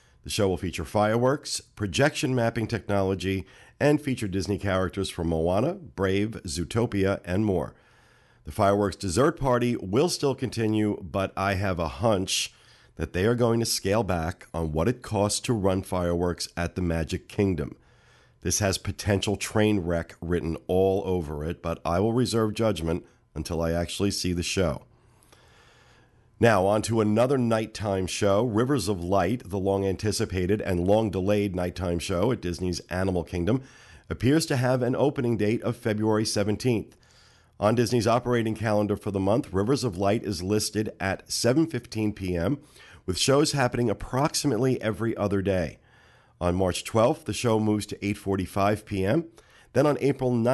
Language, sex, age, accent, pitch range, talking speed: English, male, 50-69, American, 95-115 Hz, 155 wpm